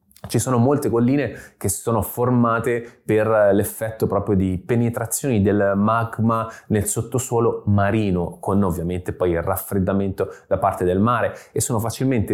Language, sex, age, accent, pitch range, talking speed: Italian, male, 30-49, native, 95-115 Hz, 145 wpm